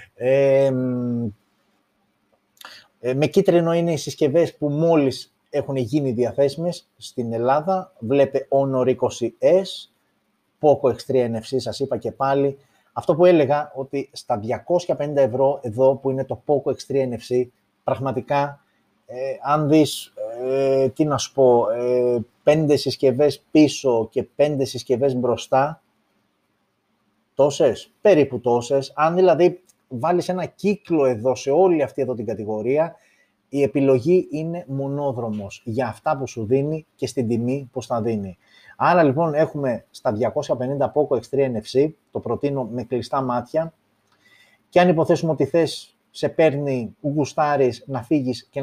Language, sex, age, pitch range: Greek, male, 30-49, 125-150 Hz